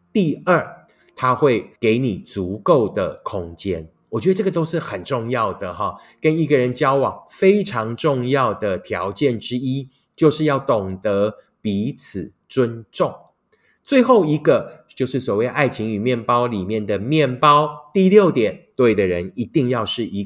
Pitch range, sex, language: 110-150 Hz, male, Chinese